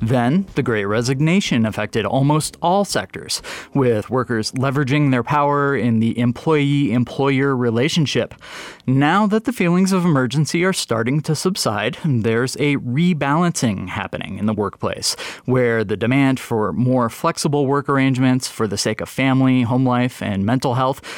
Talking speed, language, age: 145 wpm, English, 20-39